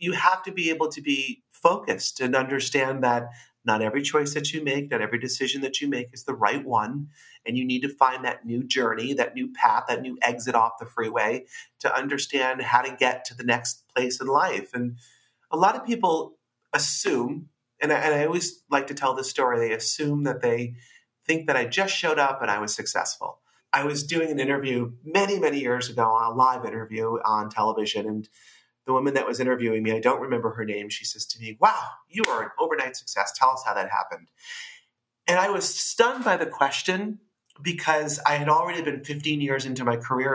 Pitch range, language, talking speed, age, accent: 125-170 Hz, English, 210 wpm, 40-59, American